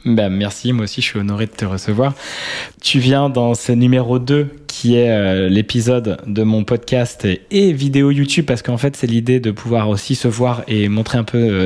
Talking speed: 210 wpm